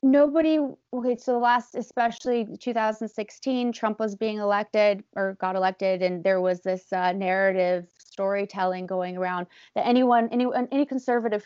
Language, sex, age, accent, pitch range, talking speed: English, female, 20-39, American, 205-265 Hz, 145 wpm